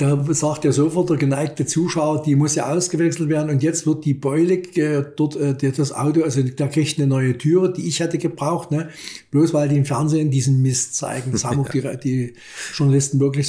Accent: German